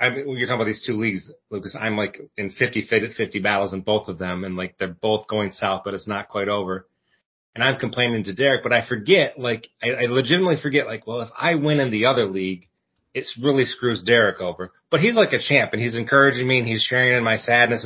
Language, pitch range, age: English, 105-135 Hz, 30-49